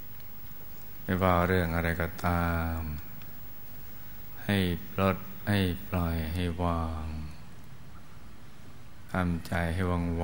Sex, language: male, Thai